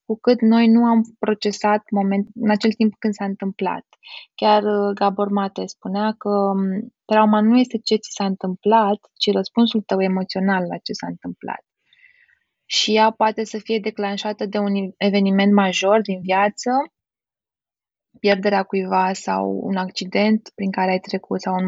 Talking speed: 155 wpm